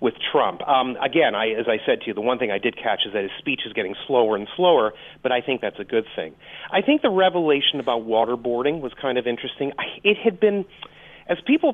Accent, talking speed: American, 240 wpm